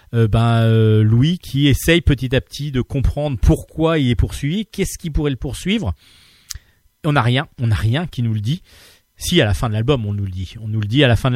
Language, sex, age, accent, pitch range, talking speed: French, male, 40-59, French, 110-150 Hz, 260 wpm